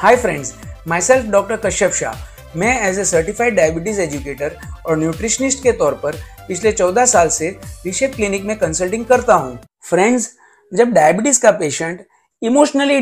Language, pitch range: Hindi, 170-265 Hz